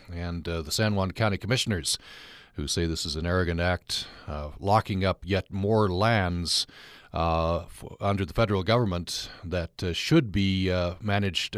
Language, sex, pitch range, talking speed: English, male, 90-105 Hz, 160 wpm